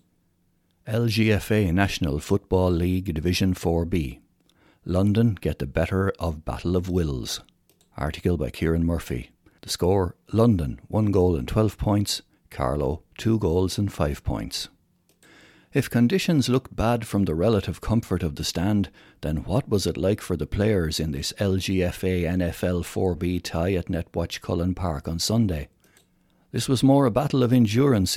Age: 60-79